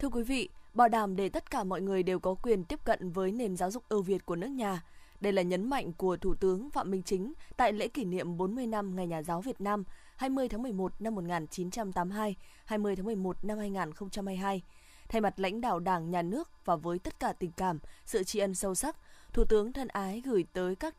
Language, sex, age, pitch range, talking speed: Vietnamese, female, 20-39, 185-235 Hz, 230 wpm